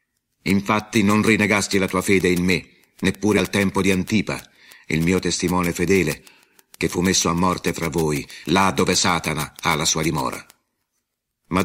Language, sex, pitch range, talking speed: Italian, male, 90-110 Hz, 165 wpm